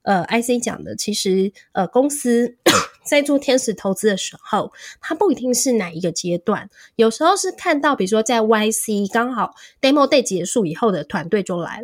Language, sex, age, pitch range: Chinese, female, 20-39, 190-250 Hz